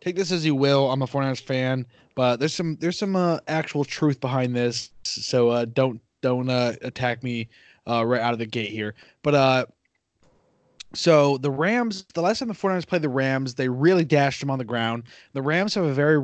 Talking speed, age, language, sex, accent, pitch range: 215 wpm, 20-39, English, male, American, 125-145 Hz